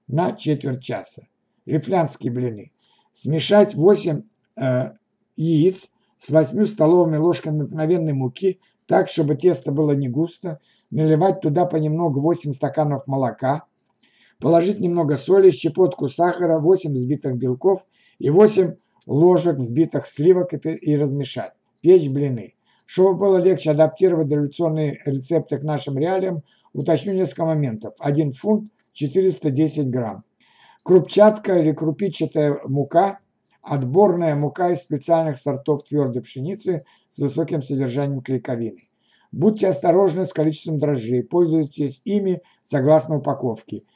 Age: 60-79